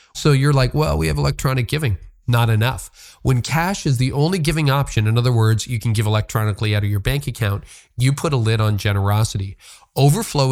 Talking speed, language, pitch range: 205 wpm, English, 110-135 Hz